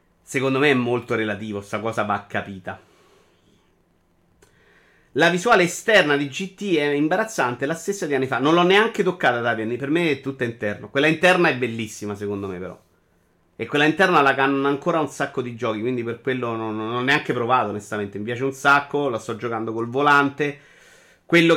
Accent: native